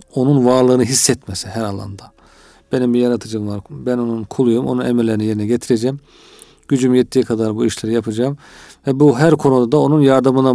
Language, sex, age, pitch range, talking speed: Turkish, male, 40-59, 115-140 Hz, 165 wpm